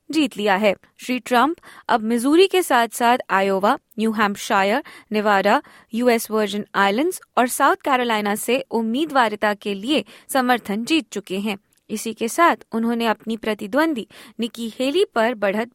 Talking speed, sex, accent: 145 wpm, female, native